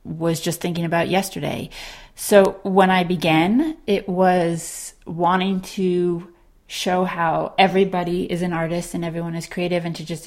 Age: 30-49